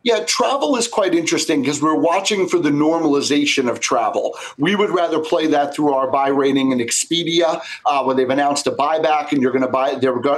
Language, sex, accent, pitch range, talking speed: English, male, American, 135-165 Hz, 210 wpm